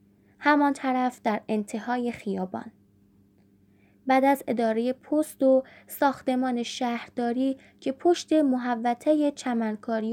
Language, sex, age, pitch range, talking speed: Persian, female, 10-29, 200-270 Hz, 95 wpm